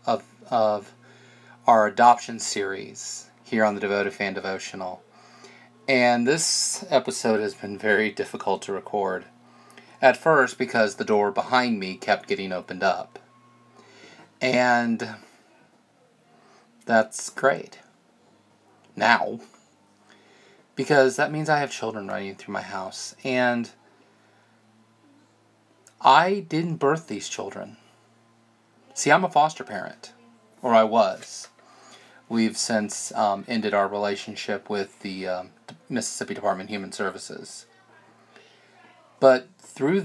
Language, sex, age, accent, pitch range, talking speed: English, male, 30-49, American, 105-130 Hz, 110 wpm